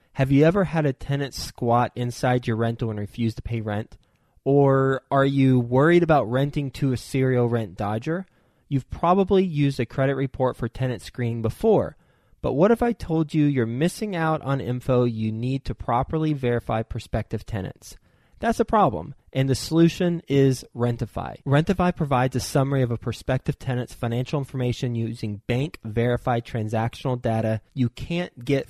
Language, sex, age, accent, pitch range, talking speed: English, male, 20-39, American, 120-145 Hz, 165 wpm